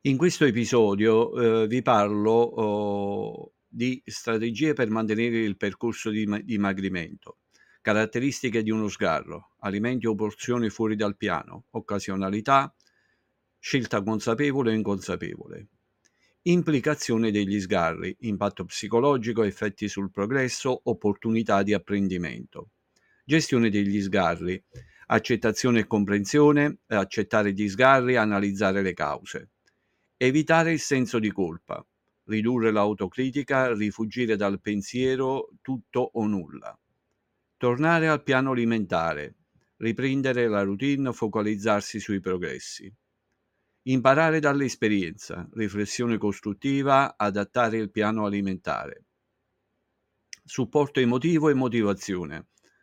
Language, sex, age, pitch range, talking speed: Italian, male, 50-69, 105-130 Hz, 100 wpm